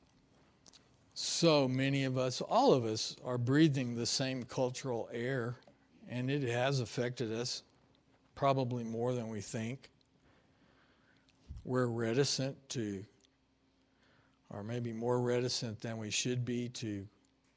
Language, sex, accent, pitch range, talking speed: English, male, American, 115-135 Hz, 120 wpm